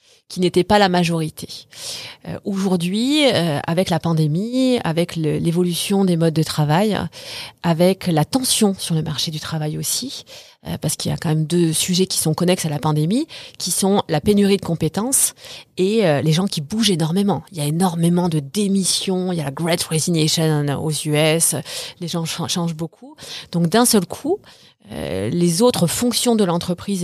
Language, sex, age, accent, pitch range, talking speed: Russian, female, 30-49, French, 165-210 Hz, 185 wpm